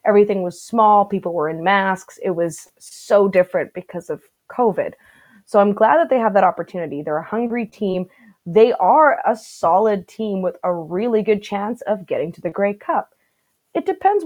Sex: female